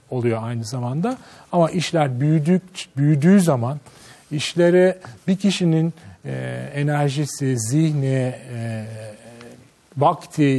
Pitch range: 140-200 Hz